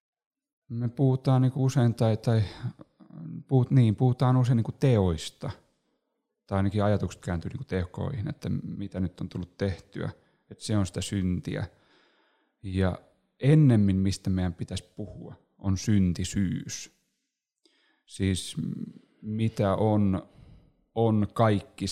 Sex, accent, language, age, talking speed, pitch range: male, native, Finnish, 30-49, 100 wpm, 90-110 Hz